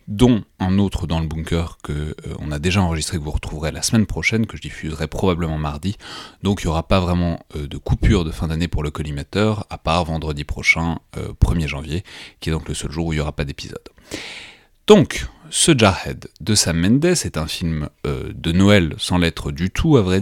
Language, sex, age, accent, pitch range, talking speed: French, male, 30-49, French, 75-95 Hz, 225 wpm